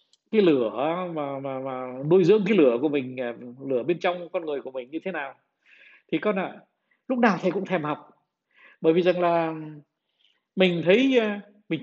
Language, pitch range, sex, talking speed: Vietnamese, 145-200 Hz, male, 185 wpm